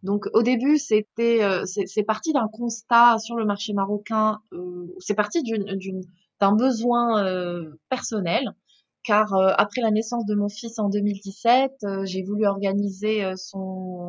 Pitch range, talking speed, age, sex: 180-215 Hz, 165 wpm, 20-39, female